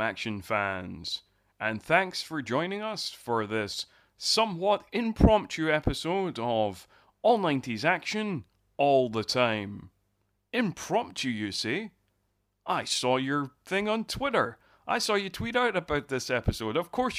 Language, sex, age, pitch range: English, male, 30-49, 110-150 Hz